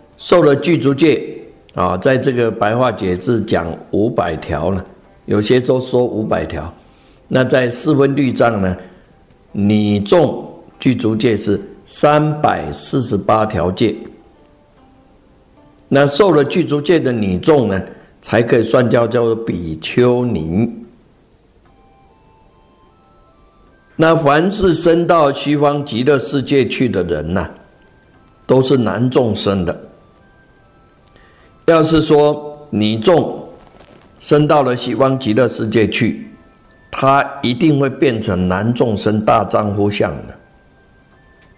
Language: Chinese